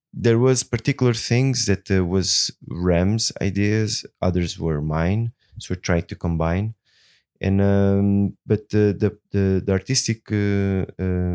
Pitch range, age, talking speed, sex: 85-100 Hz, 20-39, 130 wpm, male